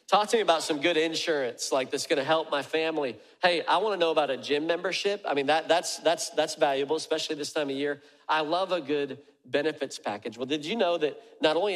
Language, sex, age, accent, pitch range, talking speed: English, male, 40-59, American, 135-165 Hz, 245 wpm